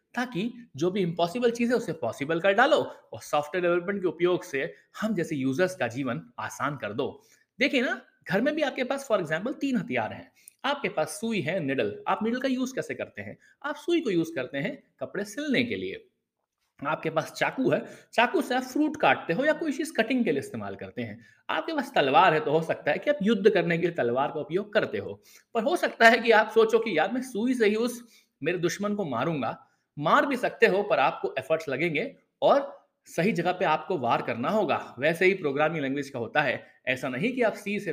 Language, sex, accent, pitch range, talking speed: Hindi, male, native, 155-235 Hz, 225 wpm